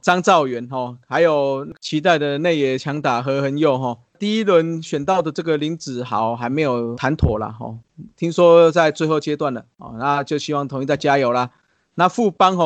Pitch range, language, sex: 135-170 Hz, Chinese, male